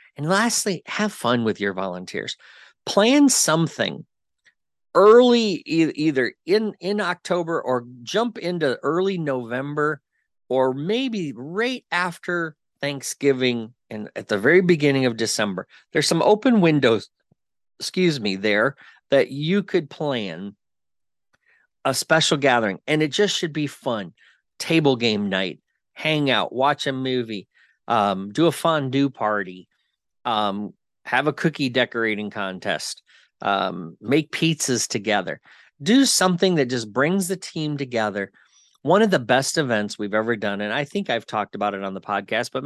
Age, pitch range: 40-59, 110-160 Hz